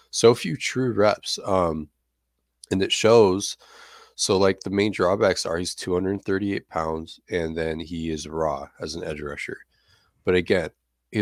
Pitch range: 80-100 Hz